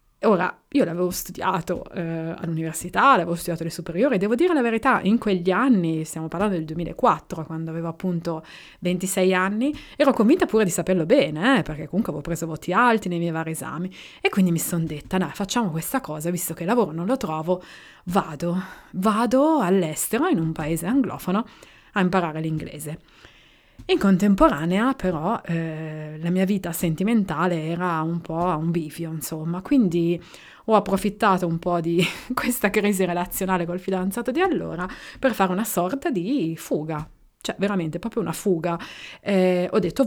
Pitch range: 165-210 Hz